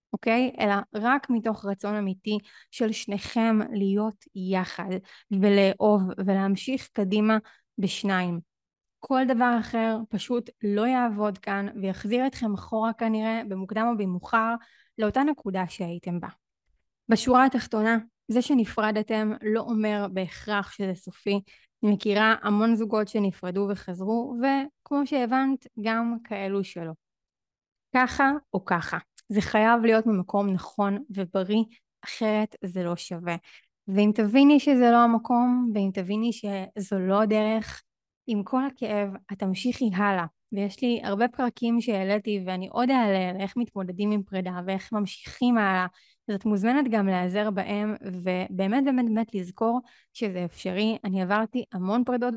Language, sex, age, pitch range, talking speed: Hebrew, female, 20-39, 195-235 Hz, 130 wpm